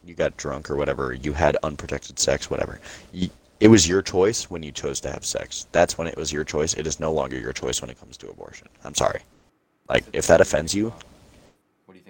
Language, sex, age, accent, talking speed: English, male, 20-39, American, 225 wpm